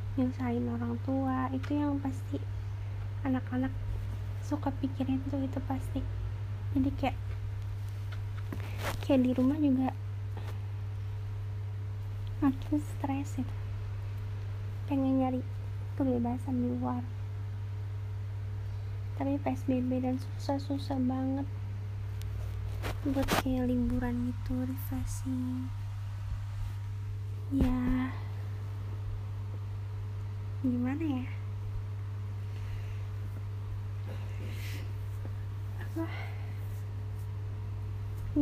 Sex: female